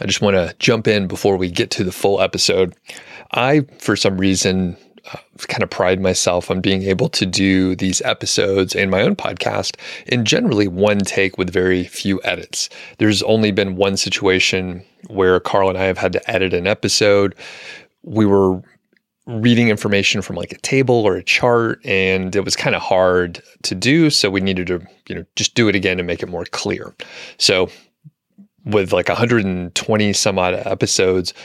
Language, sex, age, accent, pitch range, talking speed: English, male, 30-49, American, 95-105 Hz, 185 wpm